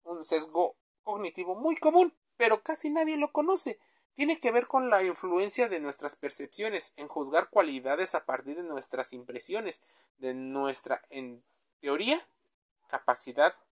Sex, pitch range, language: male, 140-210 Hz, Spanish